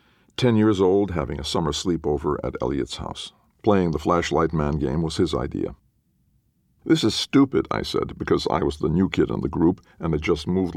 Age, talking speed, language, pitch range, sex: 50-69, 200 wpm, English, 75-105 Hz, male